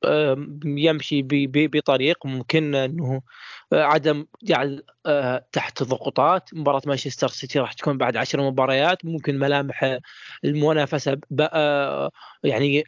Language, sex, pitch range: Arabic, male, 135-165 Hz